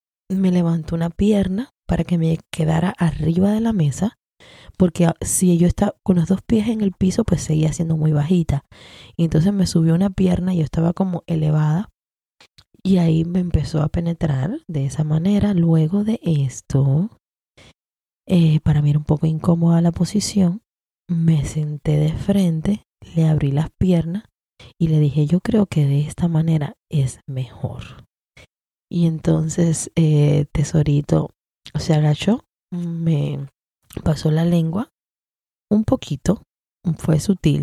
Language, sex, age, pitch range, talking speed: Spanish, female, 20-39, 150-185 Hz, 150 wpm